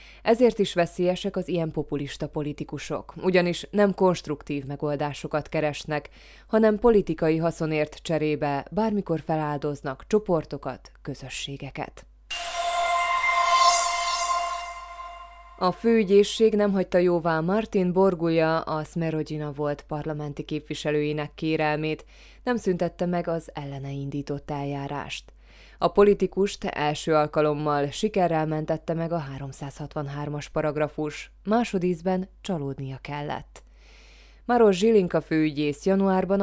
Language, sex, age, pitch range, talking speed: Hungarian, female, 20-39, 145-185 Hz, 95 wpm